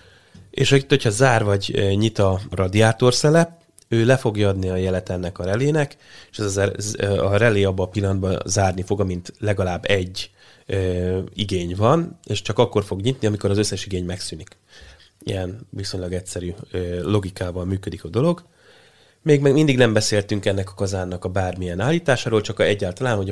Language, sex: Hungarian, male